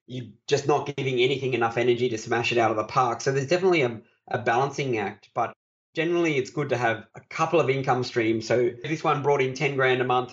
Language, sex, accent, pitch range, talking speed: English, male, Australian, 110-130 Hz, 245 wpm